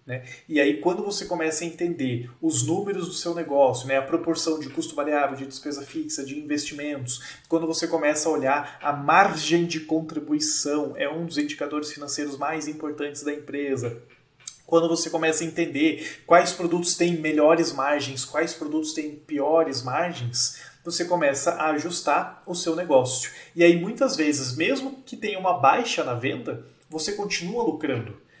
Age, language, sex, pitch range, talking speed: 30-49, Portuguese, male, 140-170 Hz, 165 wpm